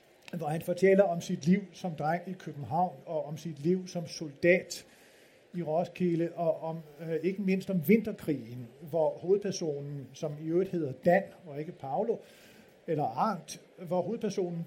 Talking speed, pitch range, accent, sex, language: 155 wpm, 155-190 Hz, native, male, Danish